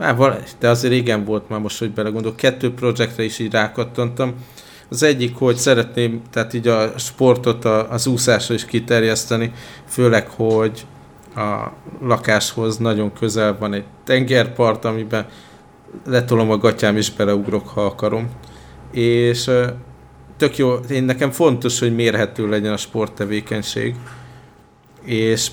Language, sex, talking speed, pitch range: Hungarian, male, 130 wpm, 105-125 Hz